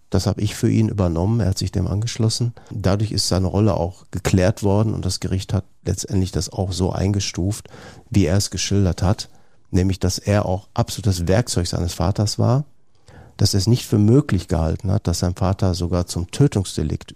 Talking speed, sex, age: 190 wpm, male, 50-69